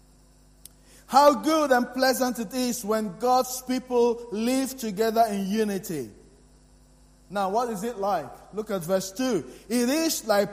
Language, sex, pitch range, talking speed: English, male, 190-250 Hz, 145 wpm